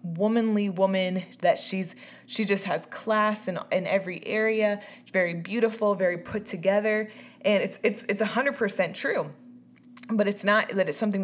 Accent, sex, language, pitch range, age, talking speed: American, female, English, 180-220 Hz, 20-39, 165 wpm